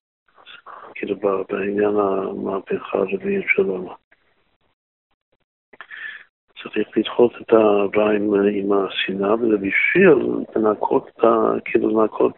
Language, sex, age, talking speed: Hebrew, male, 50-69, 95 wpm